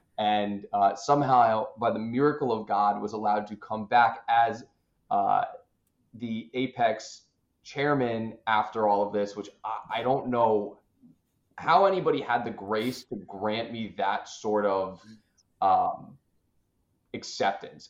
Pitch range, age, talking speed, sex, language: 95-110 Hz, 20-39, 135 wpm, male, English